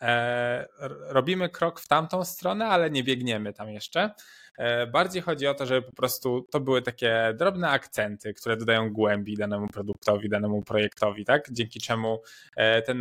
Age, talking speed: 20-39, 150 wpm